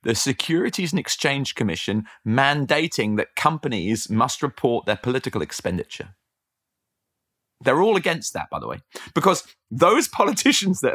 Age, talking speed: 30-49, 130 wpm